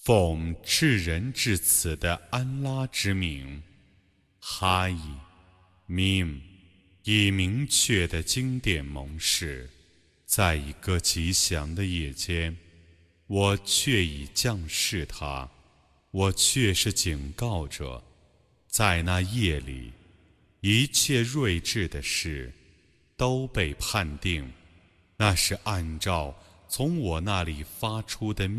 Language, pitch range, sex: Arabic, 80-110 Hz, male